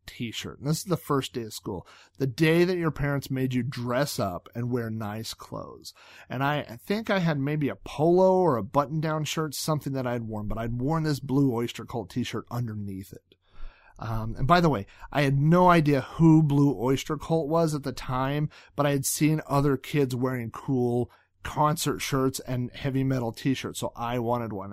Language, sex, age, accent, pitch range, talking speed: English, male, 40-59, American, 115-150 Hz, 205 wpm